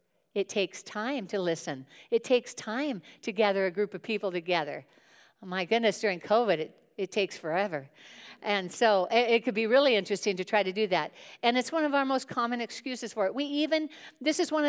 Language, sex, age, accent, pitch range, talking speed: English, female, 60-79, American, 210-265 Hz, 215 wpm